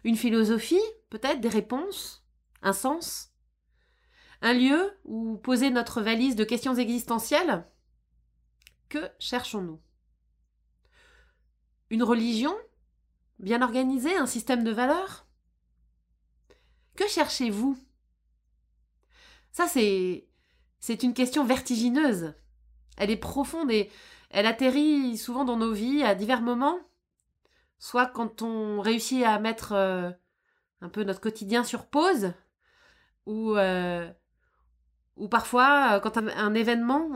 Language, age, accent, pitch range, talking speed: French, 30-49, French, 195-265 Hz, 110 wpm